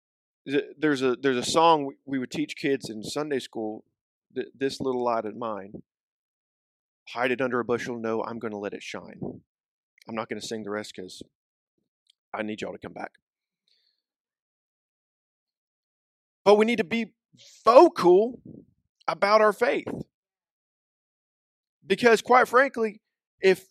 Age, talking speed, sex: 40-59, 145 wpm, male